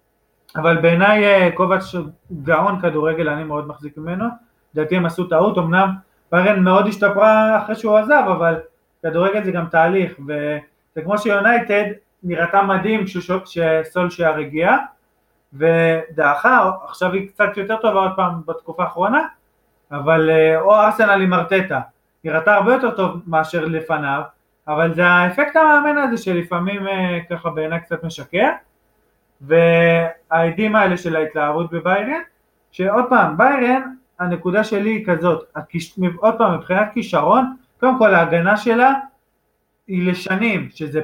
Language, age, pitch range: Hebrew, 20-39, 160-205 Hz